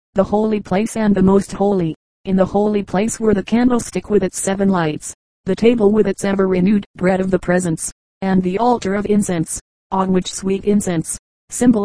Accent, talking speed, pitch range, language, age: American, 190 wpm, 185-205 Hz, English, 40-59